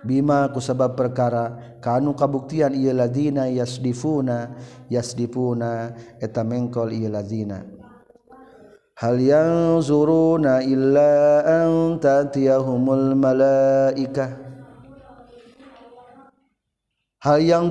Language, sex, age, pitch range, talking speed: Indonesian, male, 40-59, 120-140 Hz, 70 wpm